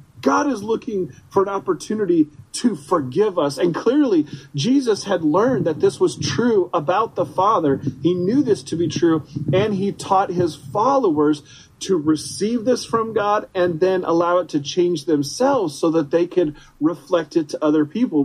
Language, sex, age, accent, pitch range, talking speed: English, male, 40-59, American, 140-195 Hz, 175 wpm